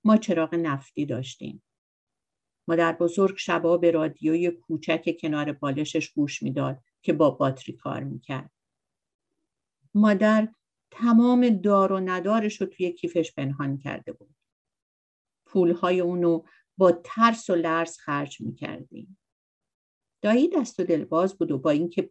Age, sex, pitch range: 50-69, female, 155-200 Hz